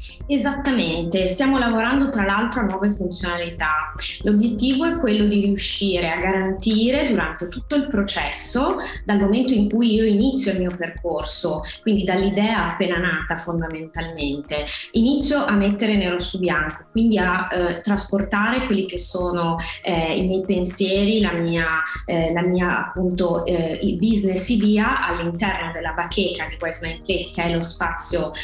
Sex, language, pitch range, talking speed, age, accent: female, Italian, 170-215 Hz, 150 wpm, 20-39, native